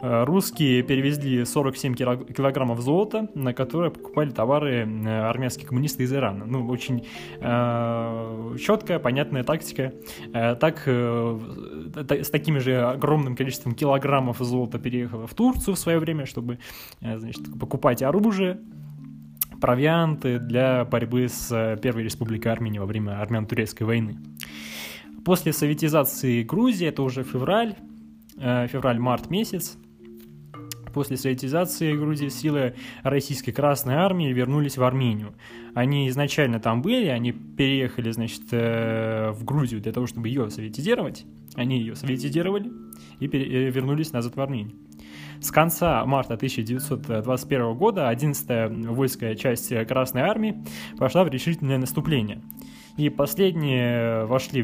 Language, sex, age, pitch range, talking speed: Russian, male, 20-39, 115-145 Hz, 120 wpm